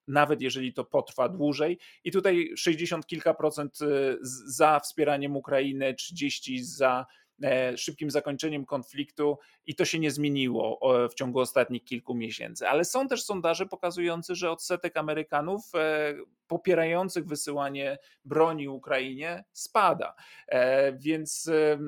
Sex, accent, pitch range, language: male, native, 135-170 Hz, Polish